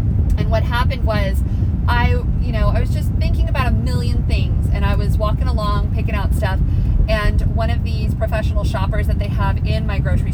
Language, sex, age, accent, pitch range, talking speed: English, female, 30-49, American, 80-100 Hz, 195 wpm